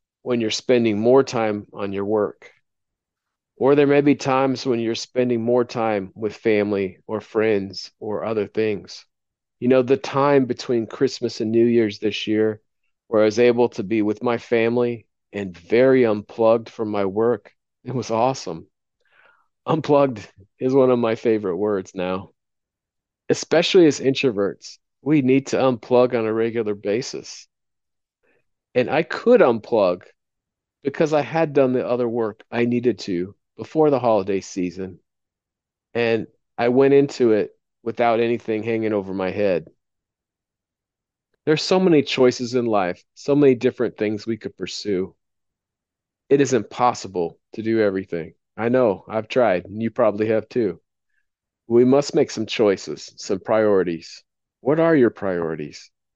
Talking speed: 150 wpm